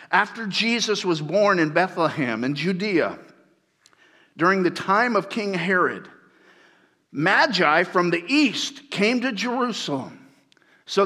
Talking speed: 120 wpm